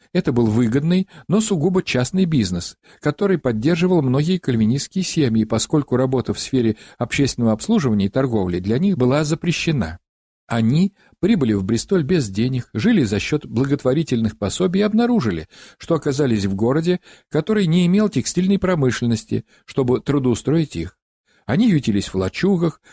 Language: Russian